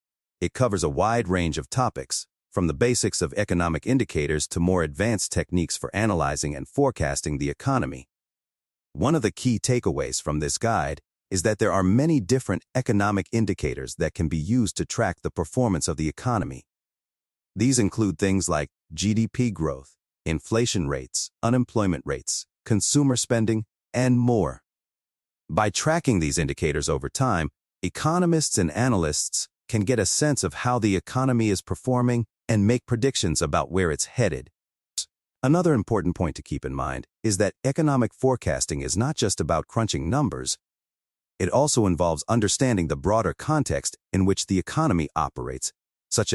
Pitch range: 75-115 Hz